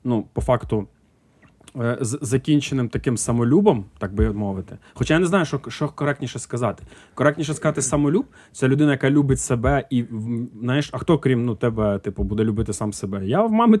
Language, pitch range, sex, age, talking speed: Ukrainian, 115-150 Hz, male, 20-39, 180 wpm